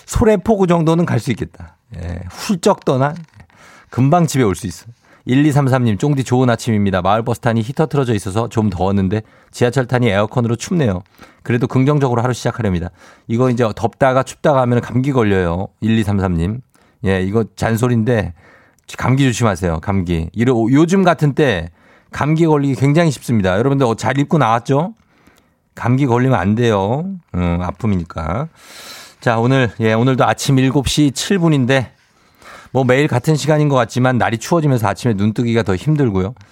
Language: Korean